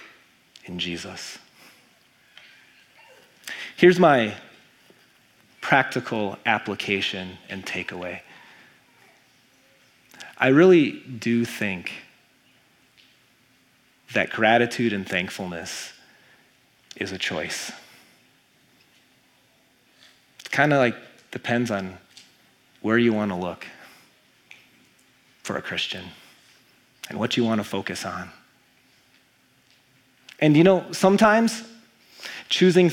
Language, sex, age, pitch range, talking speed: English, male, 30-49, 100-130 Hz, 80 wpm